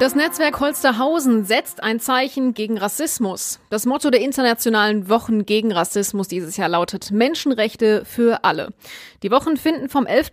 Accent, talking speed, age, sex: German, 150 wpm, 30-49, female